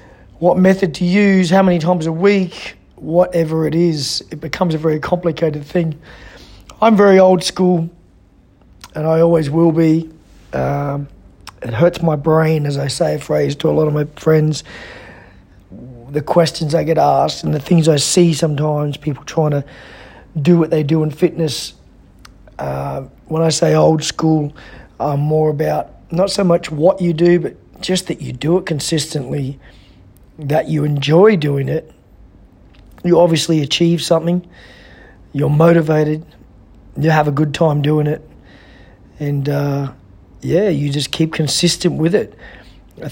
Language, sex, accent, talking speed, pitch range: English, male, Australian, 155 wpm, 145-170 Hz